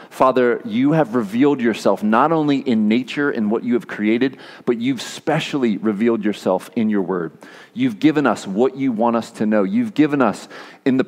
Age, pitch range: 40-59, 110-140 Hz